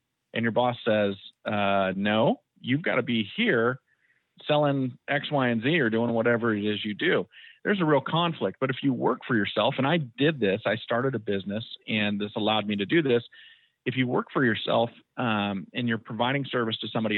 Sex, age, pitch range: male, 40-59, 105-130 Hz